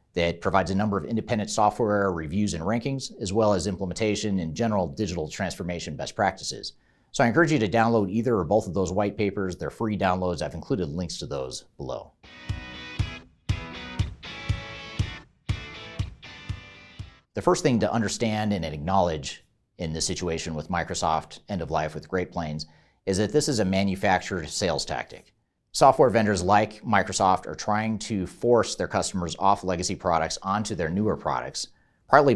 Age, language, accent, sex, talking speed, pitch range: 40-59, English, American, male, 160 wpm, 80-105 Hz